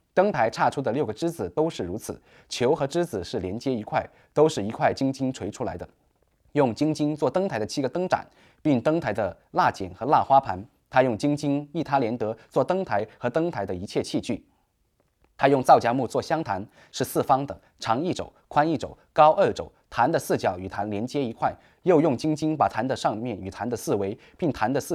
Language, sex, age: English, male, 20-39